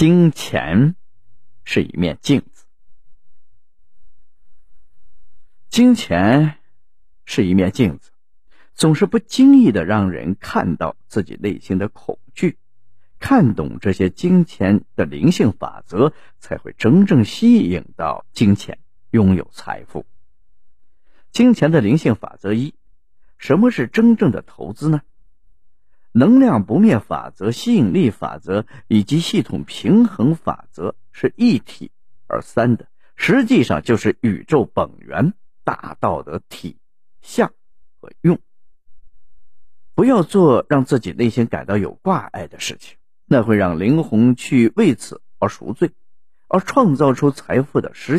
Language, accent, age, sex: Chinese, native, 50-69, male